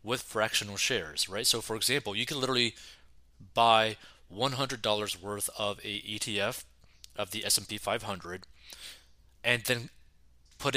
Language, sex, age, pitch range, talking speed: English, male, 20-39, 95-120 Hz, 130 wpm